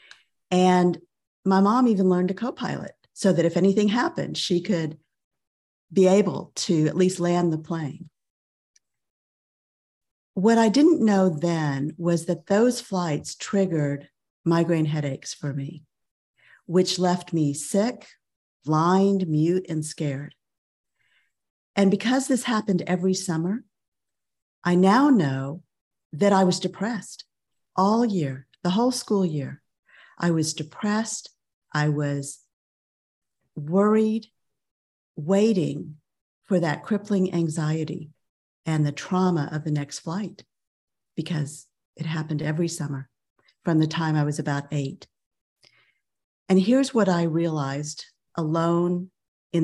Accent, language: American, English